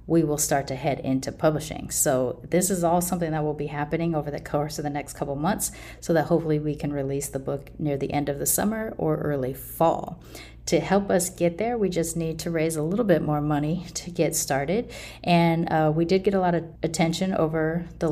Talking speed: 230 wpm